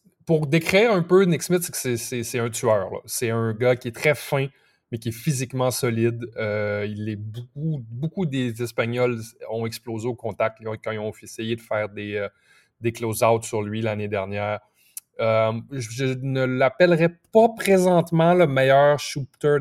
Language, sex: French, male